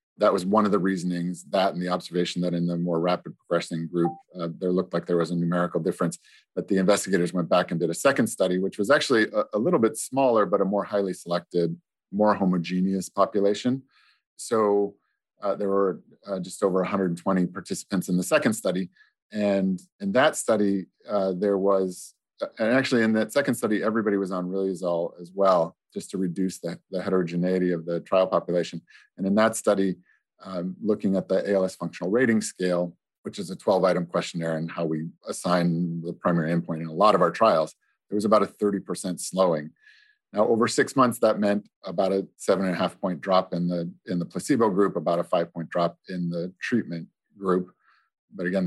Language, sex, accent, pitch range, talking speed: English, male, American, 85-100 Hz, 190 wpm